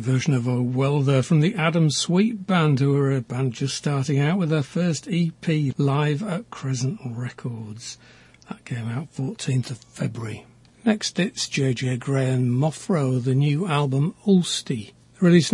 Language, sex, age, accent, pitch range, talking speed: English, male, 60-79, British, 130-160 Hz, 160 wpm